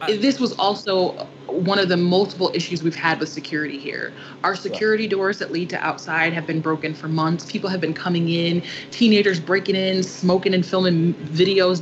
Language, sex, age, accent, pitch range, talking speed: English, female, 20-39, American, 165-195 Hz, 190 wpm